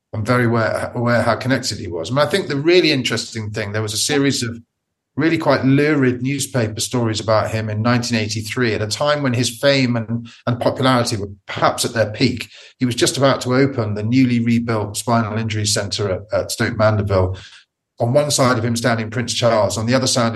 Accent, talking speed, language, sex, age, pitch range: British, 210 wpm, English, male, 40-59, 110-130 Hz